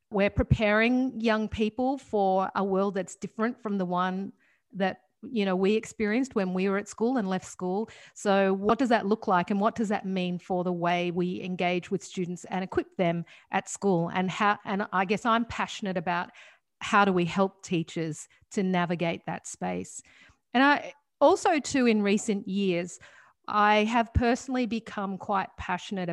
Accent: Australian